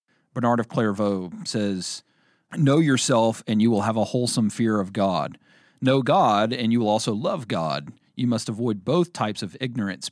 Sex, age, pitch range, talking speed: male, 40-59, 95-125 Hz, 180 wpm